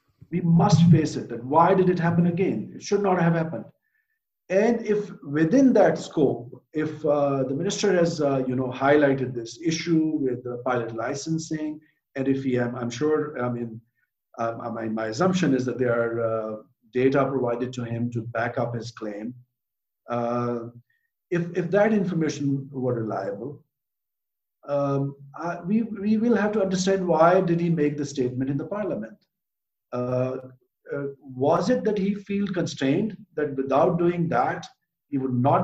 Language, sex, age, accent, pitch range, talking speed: English, male, 50-69, Indian, 130-180 Hz, 170 wpm